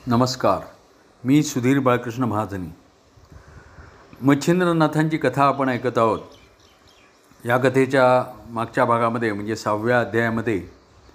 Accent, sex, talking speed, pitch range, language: native, male, 90 wpm, 115-145 Hz, Marathi